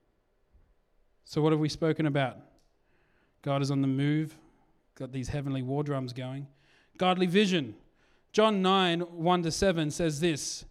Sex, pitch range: male, 155-190 Hz